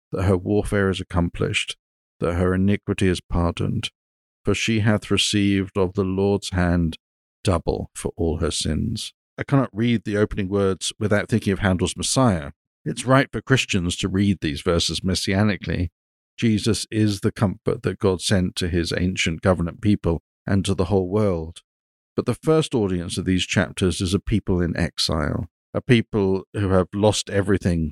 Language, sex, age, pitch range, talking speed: English, male, 50-69, 90-105 Hz, 170 wpm